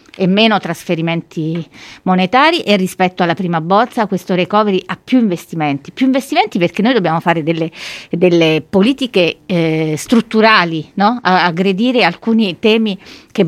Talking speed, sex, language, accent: 140 wpm, female, Italian, native